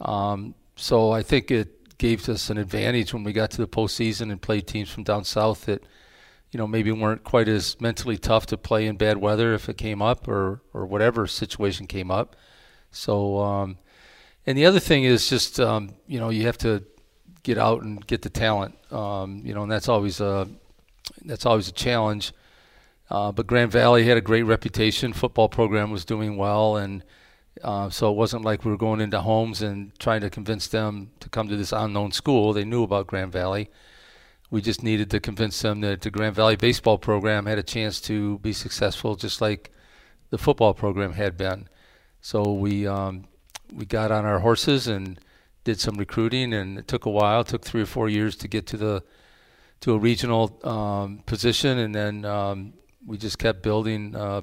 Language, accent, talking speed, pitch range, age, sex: English, American, 200 wpm, 100-115 Hz, 40-59, male